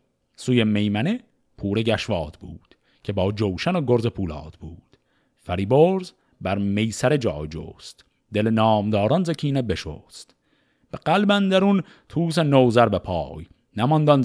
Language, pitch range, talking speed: Persian, 95-130 Hz, 115 wpm